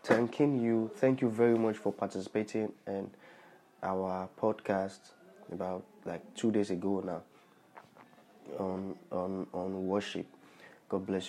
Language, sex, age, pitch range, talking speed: English, male, 20-39, 100-140 Hz, 120 wpm